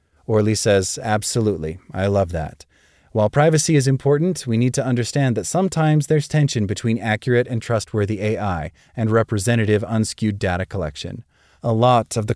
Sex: male